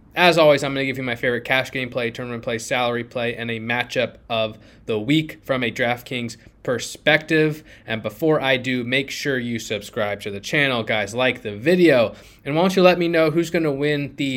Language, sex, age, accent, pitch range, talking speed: English, male, 20-39, American, 115-140 Hz, 215 wpm